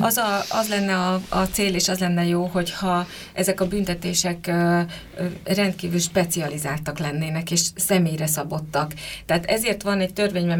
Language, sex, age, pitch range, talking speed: Hungarian, female, 30-49, 170-185 Hz, 160 wpm